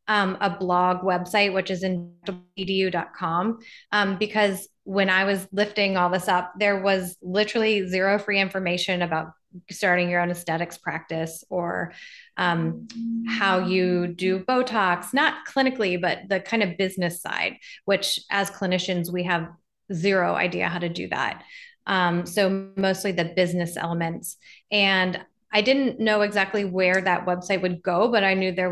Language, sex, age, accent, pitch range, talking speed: English, female, 20-39, American, 180-210 Hz, 155 wpm